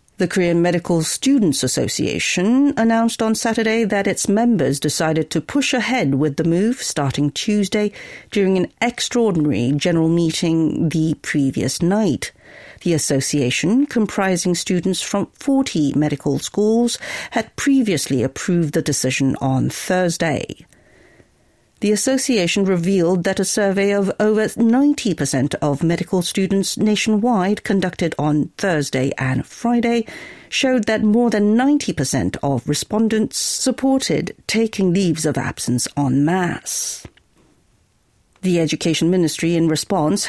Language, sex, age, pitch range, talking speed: English, female, 50-69, 155-215 Hz, 120 wpm